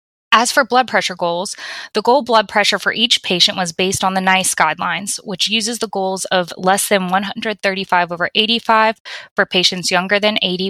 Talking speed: 185 wpm